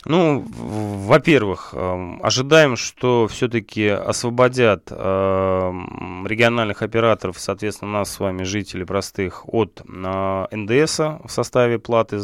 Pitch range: 95-115 Hz